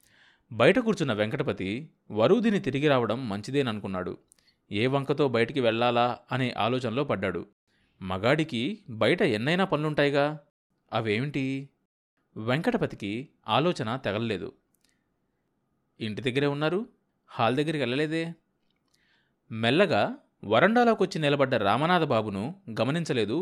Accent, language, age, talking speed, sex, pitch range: native, Telugu, 30-49, 85 wpm, male, 105-150 Hz